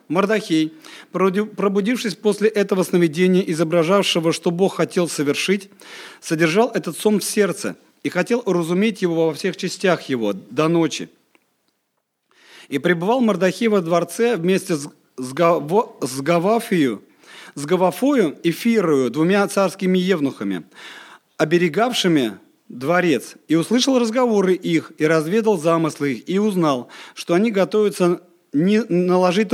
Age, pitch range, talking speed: 40-59, 160-210 Hz, 120 wpm